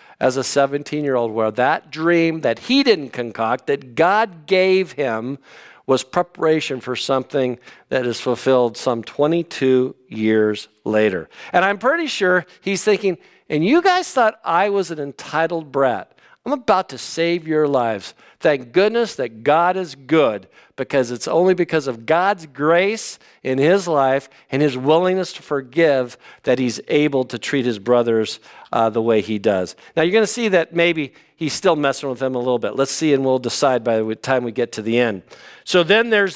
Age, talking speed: 50-69, 180 wpm